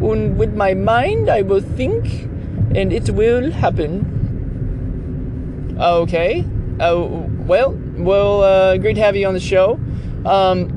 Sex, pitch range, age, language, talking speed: male, 115-185 Hz, 30-49, English, 140 wpm